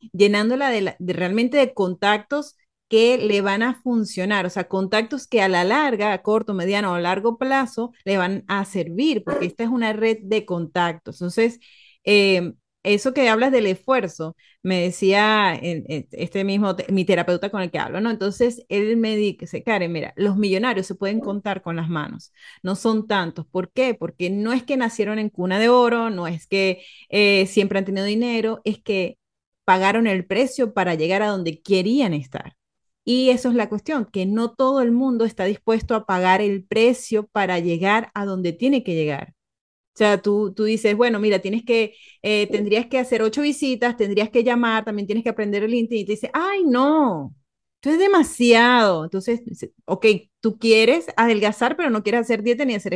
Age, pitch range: 30-49, 190-235 Hz